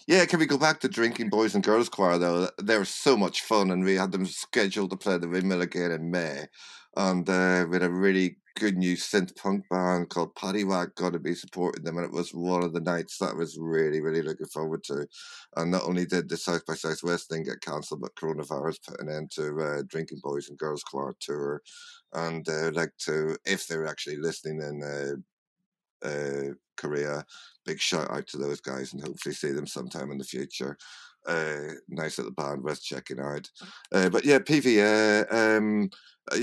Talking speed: 210 wpm